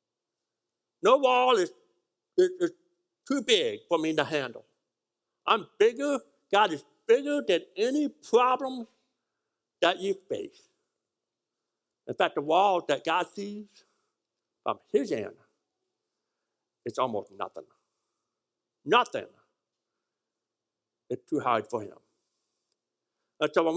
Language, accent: English, American